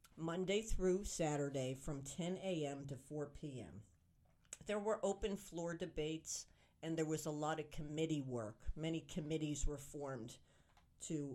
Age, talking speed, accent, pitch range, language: 50-69, 145 wpm, American, 145-190 Hz, English